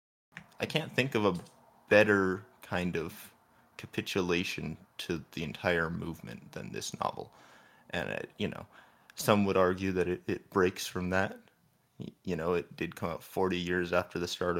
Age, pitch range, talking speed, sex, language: 20-39, 90-115 Hz, 160 wpm, male, English